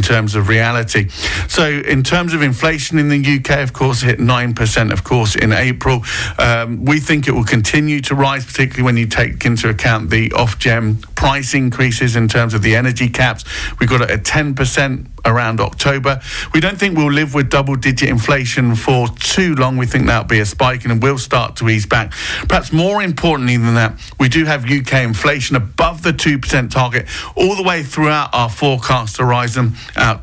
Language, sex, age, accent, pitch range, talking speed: English, male, 50-69, British, 110-140 Hz, 190 wpm